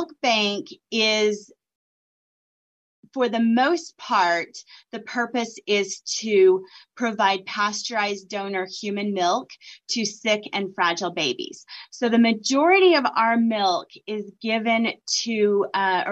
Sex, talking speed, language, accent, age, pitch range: female, 115 wpm, English, American, 30-49, 185-230 Hz